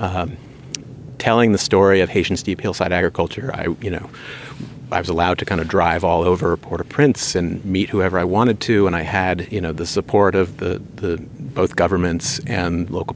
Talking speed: 190 wpm